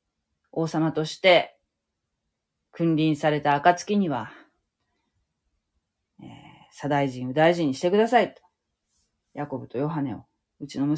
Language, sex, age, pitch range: Japanese, female, 30-49, 135-195 Hz